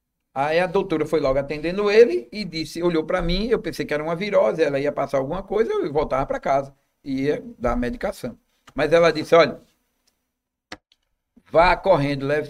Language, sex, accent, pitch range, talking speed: Portuguese, male, Brazilian, 135-175 Hz, 185 wpm